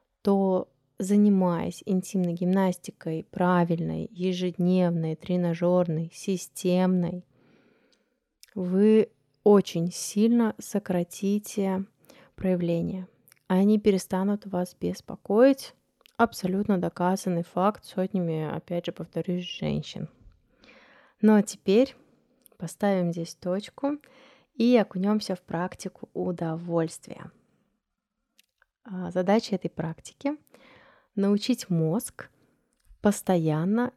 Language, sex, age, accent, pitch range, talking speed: Russian, female, 20-39, native, 175-210 Hz, 75 wpm